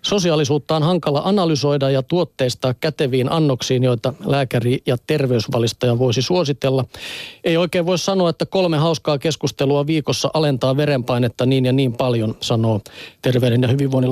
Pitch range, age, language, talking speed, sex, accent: 125-155 Hz, 40-59, Finnish, 140 wpm, male, native